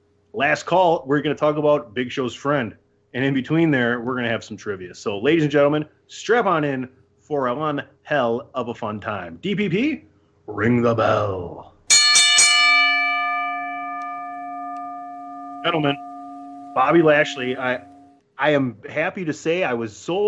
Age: 30-49